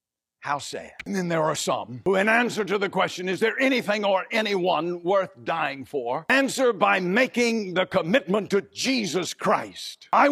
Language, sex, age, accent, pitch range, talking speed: English, male, 50-69, American, 180-245 Hz, 175 wpm